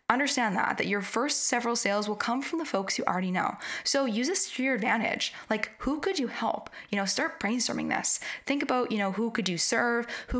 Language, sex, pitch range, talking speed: English, female, 200-265 Hz, 230 wpm